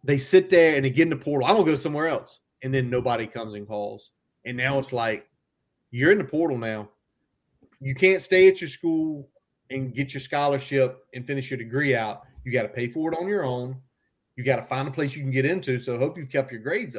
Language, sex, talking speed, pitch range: English, male, 250 wpm, 125-145 Hz